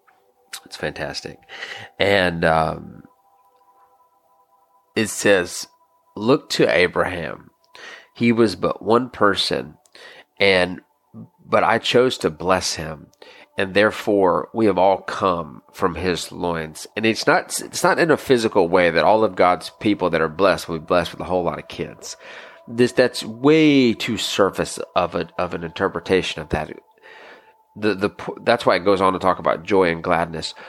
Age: 30-49